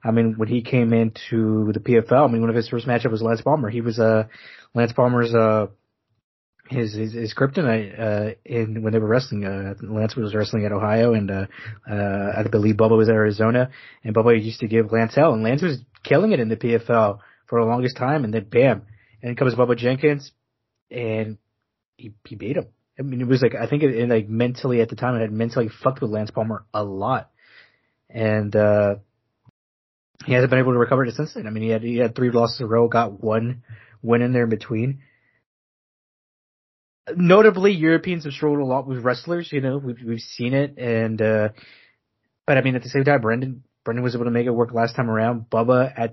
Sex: male